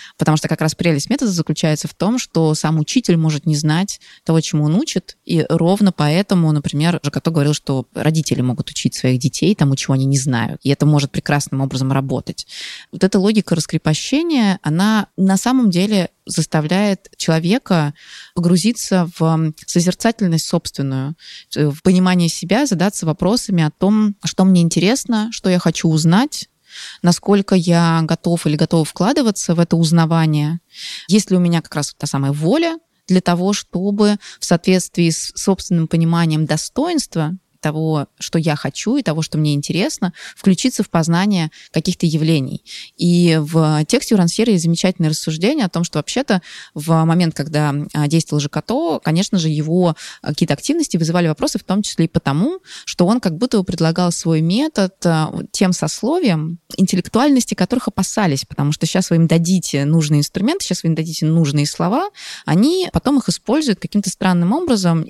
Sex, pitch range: female, 155-200 Hz